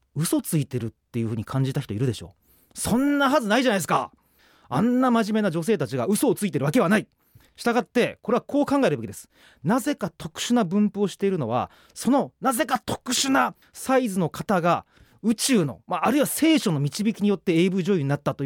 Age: 30-49